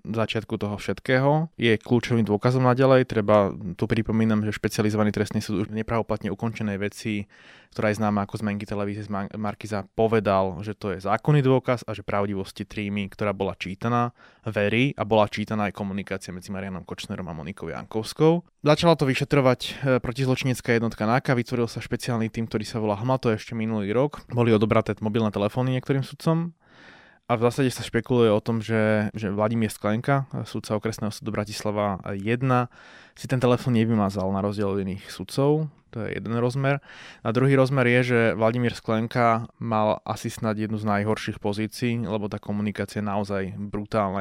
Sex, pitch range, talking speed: male, 105-120 Hz, 170 wpm